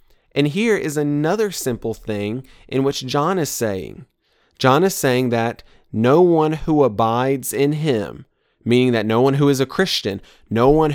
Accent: American